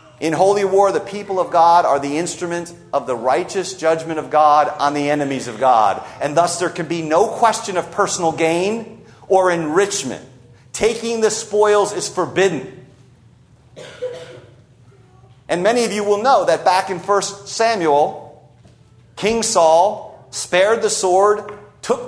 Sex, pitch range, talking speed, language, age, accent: male, 145-200 Hz, 150 wpm, English, 40-59, American